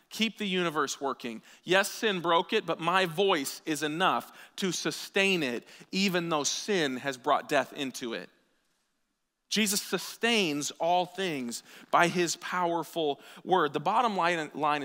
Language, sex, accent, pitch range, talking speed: English, male, American, 145-200 Hz, 140 wpm